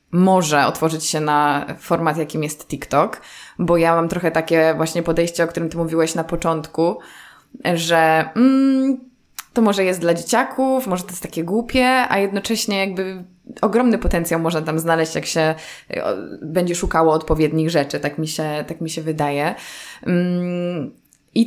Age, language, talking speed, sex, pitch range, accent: 20-39, Polish, 145 wpm, female, 160-185 Hz, native